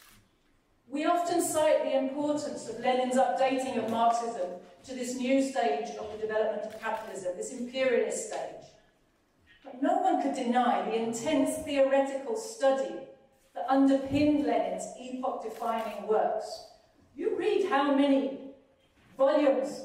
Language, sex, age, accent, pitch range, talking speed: English, female, 40-59, British, 240-295 Hz, 125 wpm